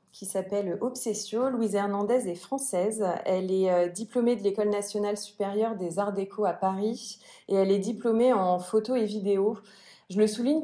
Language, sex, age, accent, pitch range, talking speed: French, female, 30-49, French, 195-220 Hz, 170 wpm